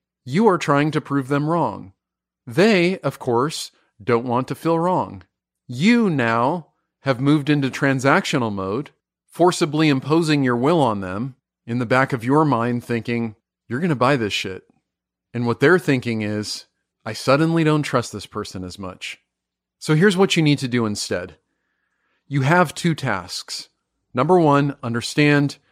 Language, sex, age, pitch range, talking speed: English, male, 40-59, 115-155 Hz, 160 wpm